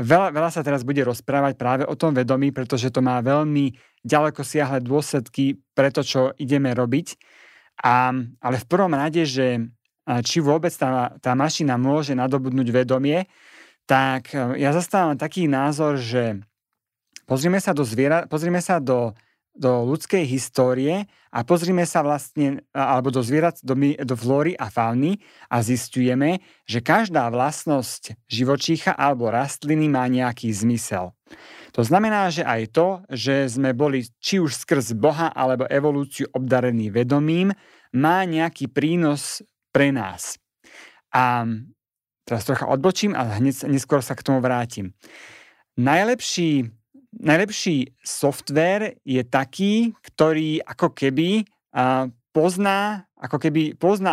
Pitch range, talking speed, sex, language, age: 125-160 Hz, 135 wpm, male, Slovak, 30-49